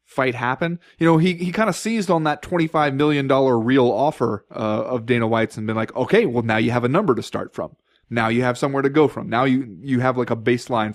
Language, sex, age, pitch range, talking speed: English, male, 20-39, 120-155 Hz, 250 wpm